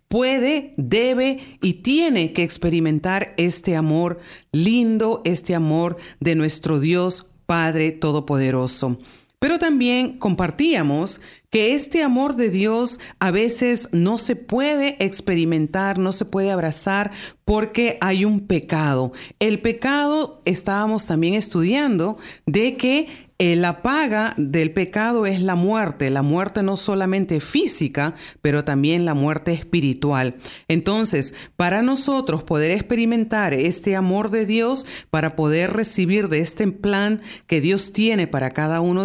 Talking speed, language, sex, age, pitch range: 130 wpm, Spanish, female, 40-59, 160-225 Hz